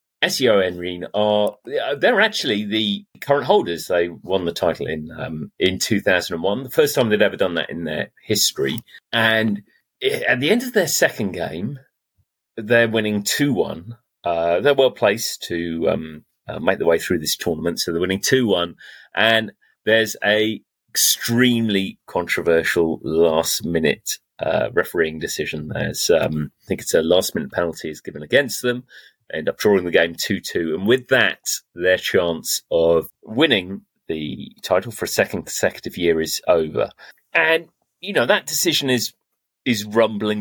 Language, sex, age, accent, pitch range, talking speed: English, male, 30-49, British, 90-125 Hz, 165 wpm